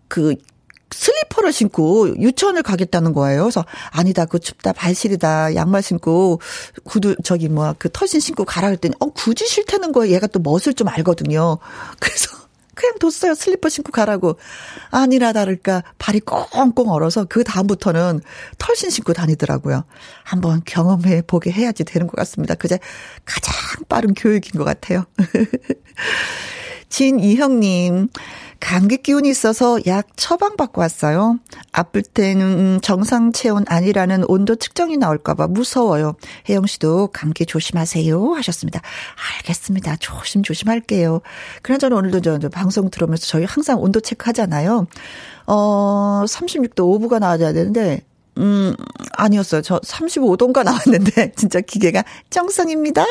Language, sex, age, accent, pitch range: Korean, female, 40-59, native, 175-250 Hz